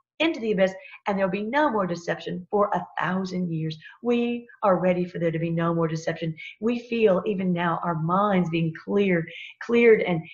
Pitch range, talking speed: 170-215 Hz, 190 wpm